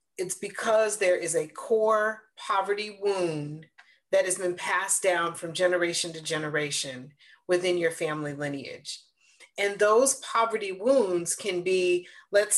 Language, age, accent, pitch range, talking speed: English, 40-59, American, 180-215 Hz, 135 wpm